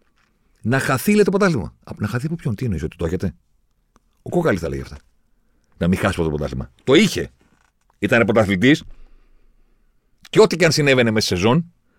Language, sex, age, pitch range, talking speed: Greek, male, 40-59, 80-135 Hz, 185 wpm